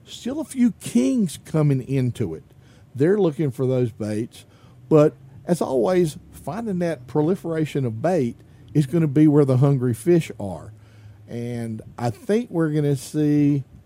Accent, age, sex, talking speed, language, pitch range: American, 50-69, male, 155 wpm, English, 125-165 Hz